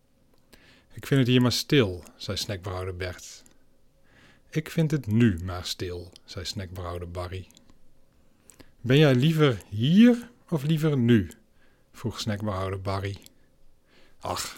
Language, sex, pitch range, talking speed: Dutch, male, 95-130 Hz, 120 wpm